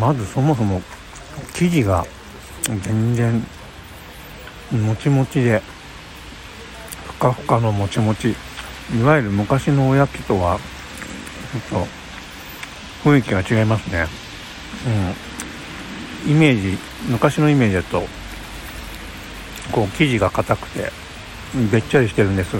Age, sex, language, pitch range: 60-79, male, Japanese, 85-120 Hz